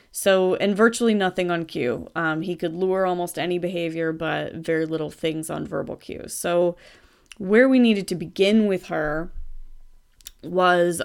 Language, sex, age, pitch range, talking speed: English, female, 20-39, 165-190 Hz, 160 wpm